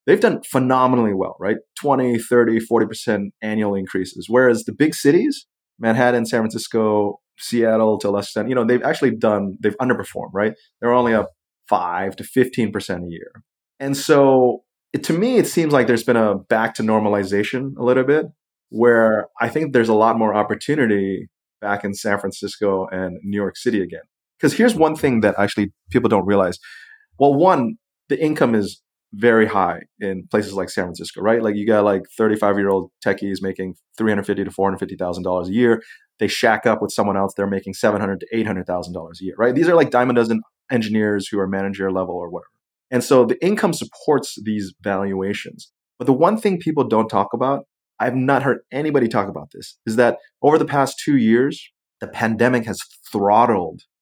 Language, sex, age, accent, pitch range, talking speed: English, male, 30-49, American, 100-125 Hz, 180 wpm